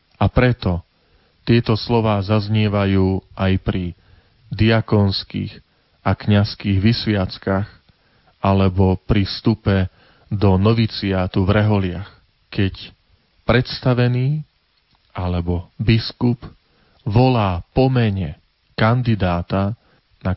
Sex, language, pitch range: male, Slovak, 90-110 Hz